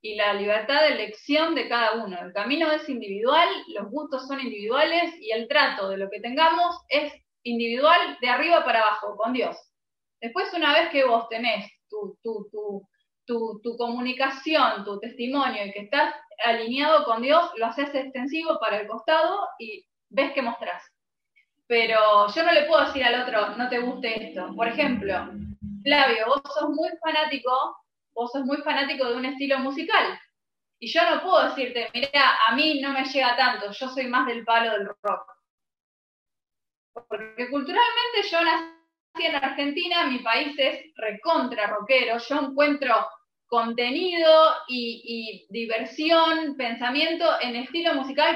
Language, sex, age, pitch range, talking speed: Spanish, female, 20-39, 225-310 Hz, 155 wpm